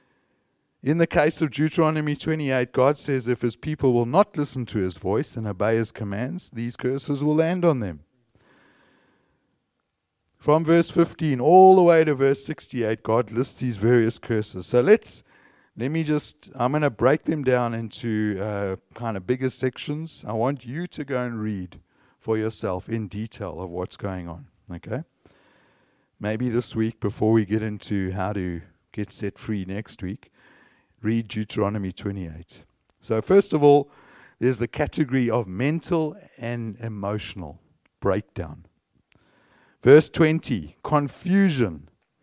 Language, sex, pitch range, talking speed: English, male, 105-145 Hz, 150 wpm